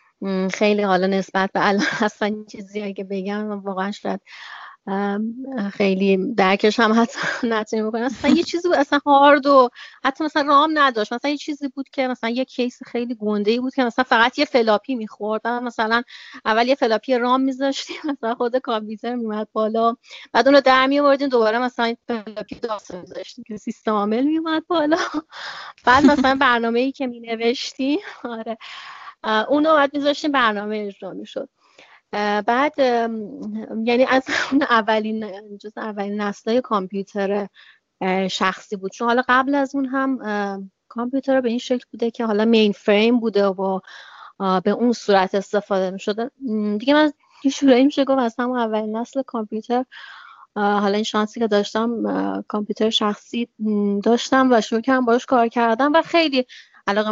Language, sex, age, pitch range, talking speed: Persian, female, 30-49, 210-265 Hz, 145 wpm